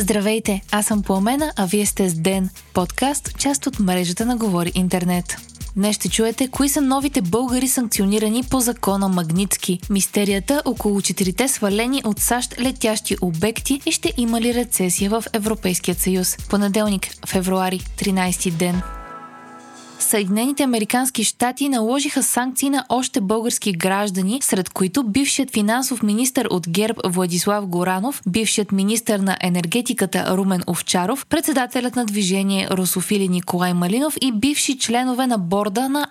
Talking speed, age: 140 wpm, 20-39